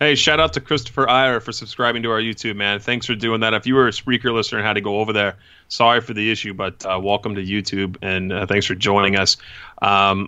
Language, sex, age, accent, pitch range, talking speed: English, male, 30-49, American, 105-130 Hz, 255 wpm